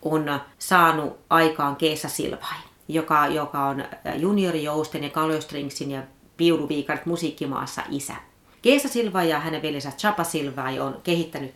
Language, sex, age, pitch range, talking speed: Finnish, female, 30-49, 150-195 Hz, 125 wpm